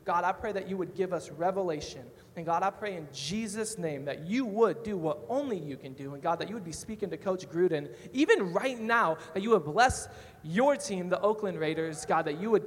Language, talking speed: English, 240 wpm